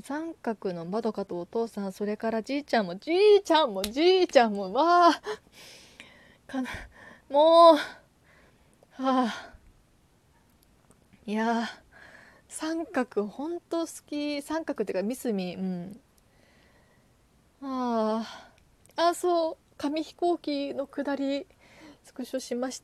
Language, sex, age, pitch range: Japanese, female, 20-39, 210-280 Hz